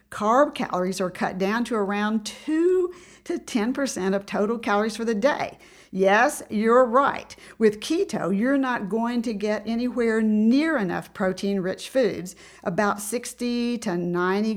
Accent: American